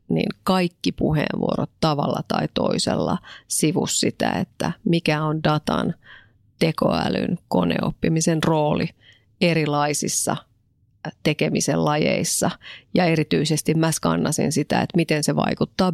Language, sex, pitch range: Finnish, female, 150-165 Hz